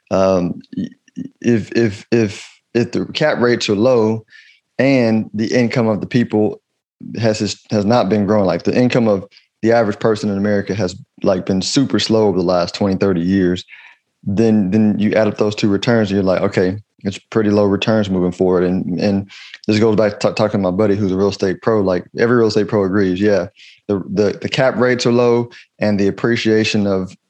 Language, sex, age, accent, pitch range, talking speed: English, male, 20-39, American, 100-115 Hz, 200 wpm